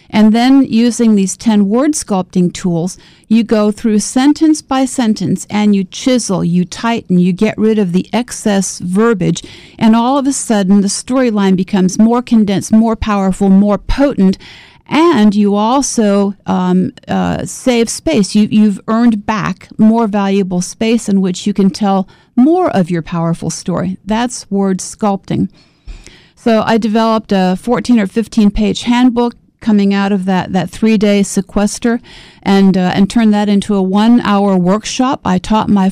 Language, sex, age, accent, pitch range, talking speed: English, female, 50-69, American, 185-225 Hz, 155 wpm